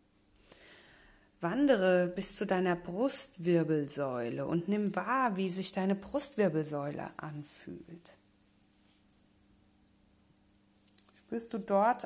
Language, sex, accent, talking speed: German, female, German, 80 wpm